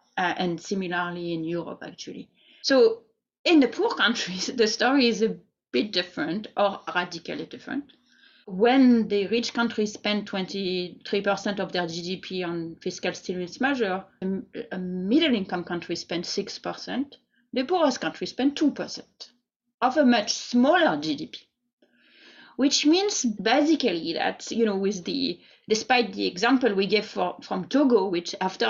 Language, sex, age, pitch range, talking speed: English, female, 30-49, 195-255 Hz, 140 wpm